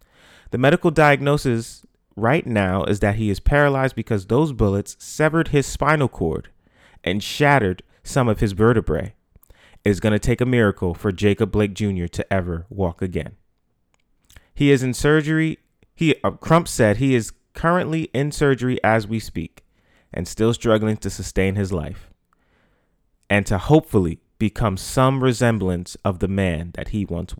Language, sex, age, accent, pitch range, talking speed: English, male, 30-49, American, 95-135 Hz, 160 wpm